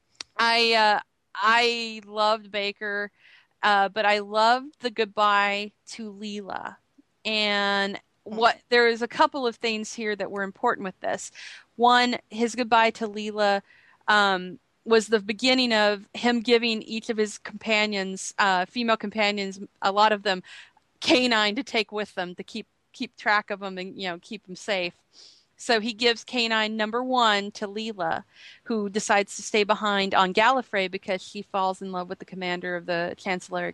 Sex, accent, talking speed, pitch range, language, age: female, American, 165 wpm, 195-225 Hz, English, 30-49